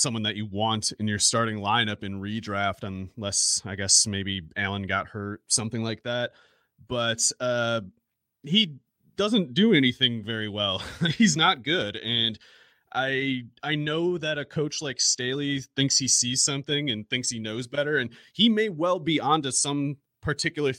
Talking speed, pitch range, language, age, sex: 165 wpm, 110-145 Hz, English, 30-49, male